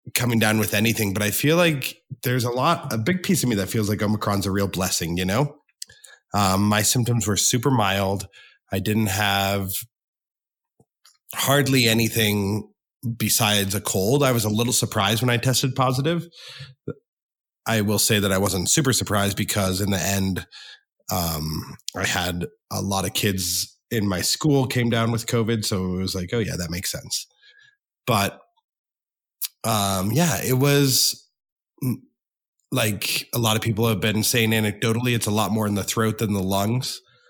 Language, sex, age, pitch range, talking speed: English, male, 30-49, 95-125 Hz, 170 wpm